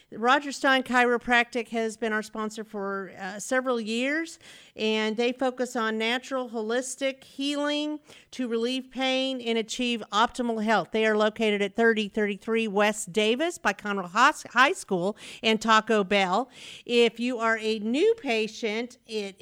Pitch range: 210-260 Hz